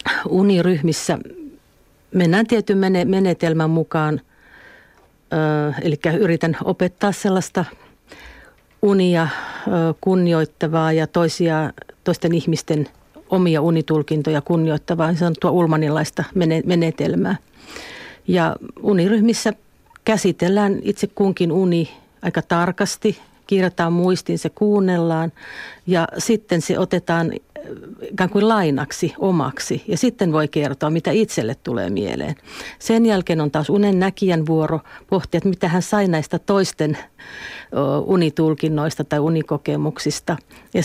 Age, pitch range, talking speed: 50-69, 160-195 Hz, 100 wpm